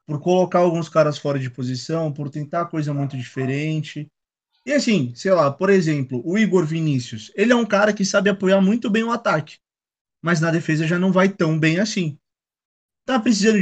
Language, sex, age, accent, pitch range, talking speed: Portuguese, male, 20-39, Brazilian, 155-210 Hz, 190 wpm